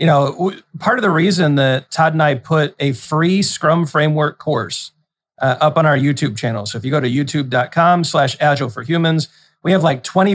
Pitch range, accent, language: 140-175 Hz, American, English